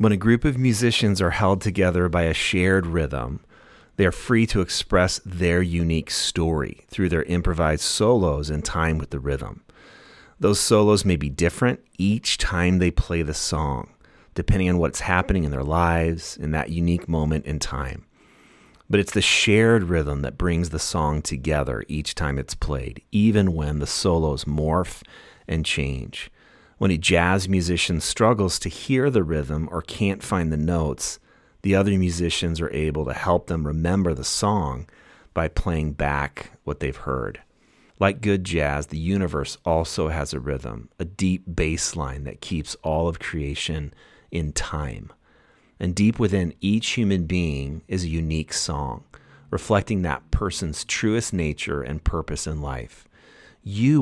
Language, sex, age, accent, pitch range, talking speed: English, male, 30-49, American, 75-95 Hz, 160 wpm